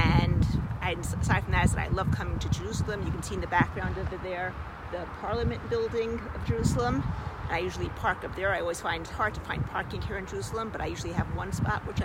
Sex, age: female, 40-59